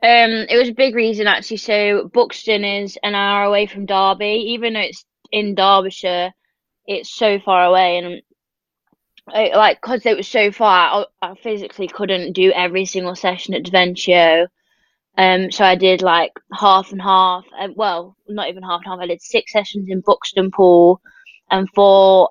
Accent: British